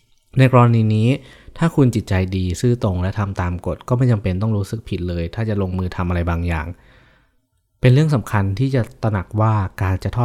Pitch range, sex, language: 90-110 Hz, male, Thai